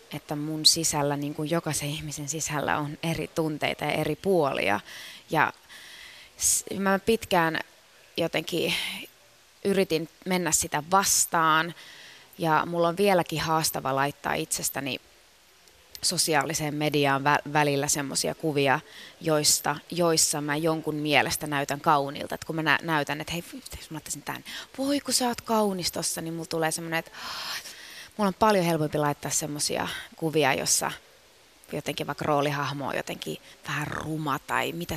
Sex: female